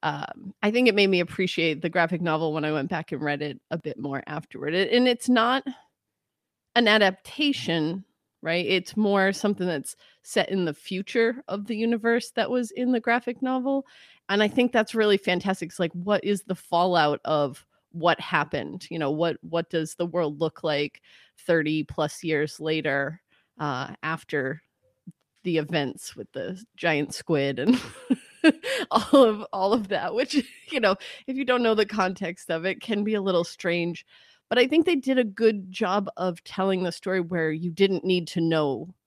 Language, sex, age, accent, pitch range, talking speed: English, female, 30-49, American, 160-225 Hz, 185 wpm